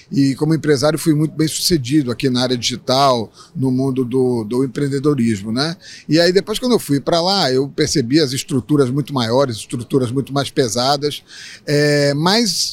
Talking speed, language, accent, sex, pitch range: 170 wpm, Portuguese, Brazilian, male, 135-165 Hz